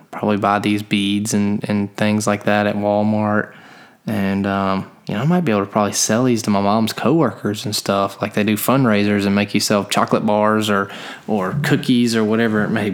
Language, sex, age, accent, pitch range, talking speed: English, male, 20-39, American, 100-105 Hz, 215 wpm